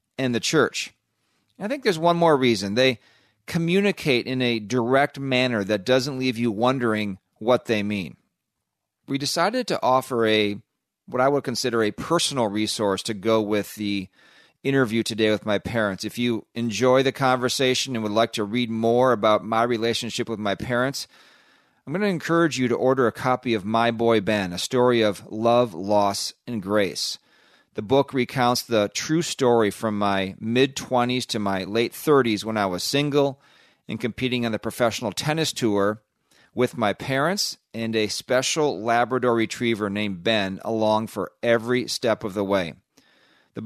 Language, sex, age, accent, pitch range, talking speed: English, male, 40-59, American, 105-130 Hz, 170 wpm